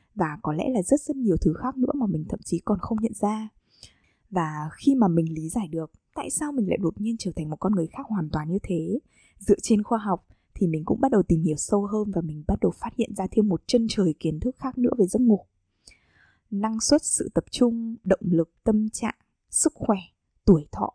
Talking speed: 245 wpm